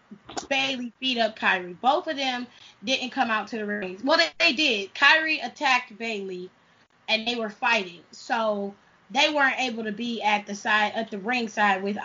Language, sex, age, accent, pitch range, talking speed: English, female, 10-29, American, 200-245 Hz, 185 wpm